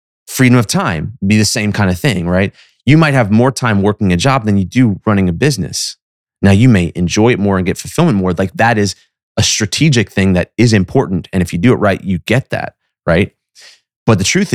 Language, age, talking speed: English, 30-49, 230 wpm